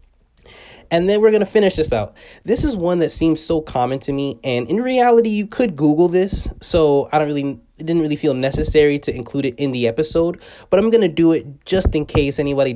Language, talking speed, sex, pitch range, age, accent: English, 230 wpm, male, 120-155 Hz, 20-39, American